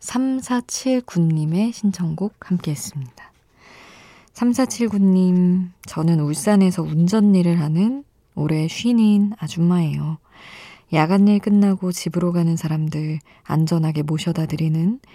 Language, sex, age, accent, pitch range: Korean, female, 20-39, native, 155-190 Hz